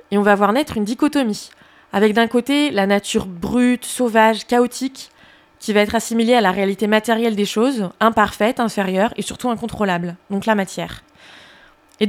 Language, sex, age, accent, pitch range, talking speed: French, female, 20-39, French, 205-245 Hz, 170 wpm